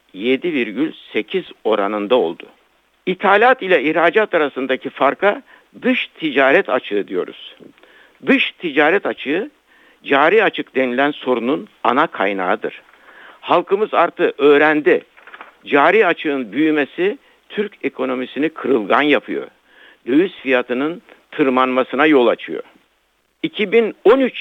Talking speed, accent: 90 wpm, native